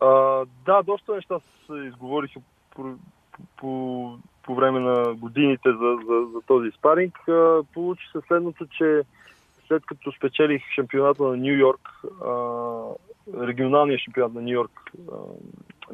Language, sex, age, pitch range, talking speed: Bulgarian, male, 20-39, 120-140 Hz, 140 wpm